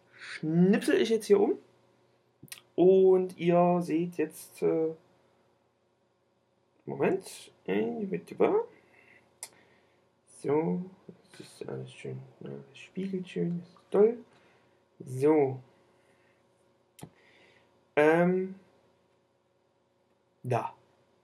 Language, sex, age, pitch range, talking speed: German, male, 60-79, 140-205 Hz, 70 wpm